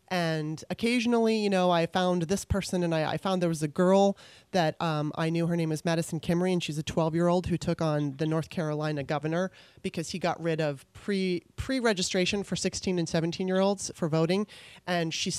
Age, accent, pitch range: 30-49, American, 155-190 Hz